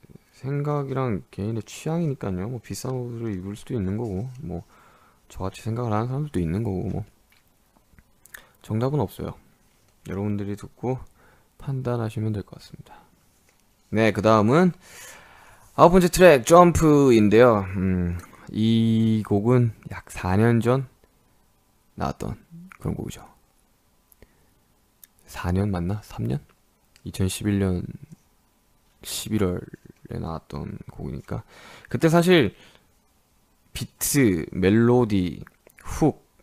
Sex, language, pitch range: male, Korean, 95-125 Hz